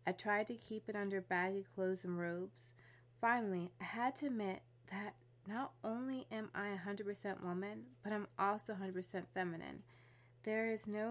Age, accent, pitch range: 30-49, American, 175-220 Hz